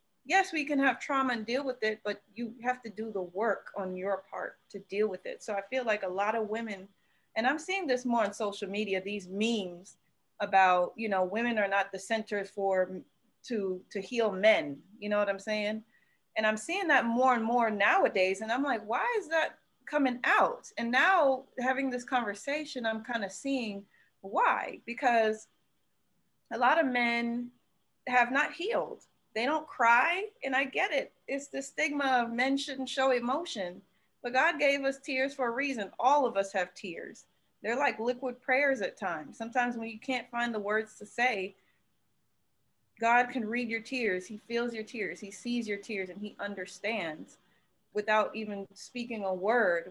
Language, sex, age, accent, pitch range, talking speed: English, female, 30-49, American, 205-260 Hz, 190 wpm